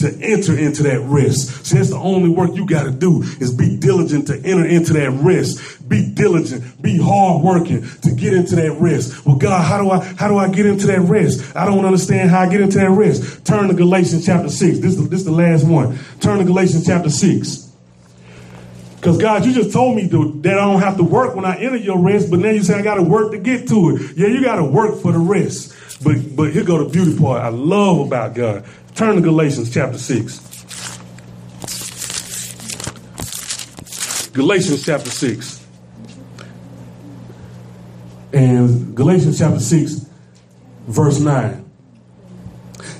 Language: English